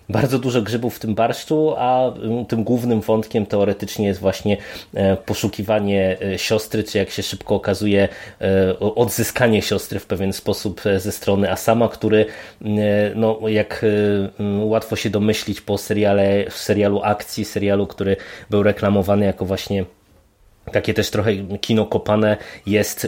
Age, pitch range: 20-39, 100-115 Hz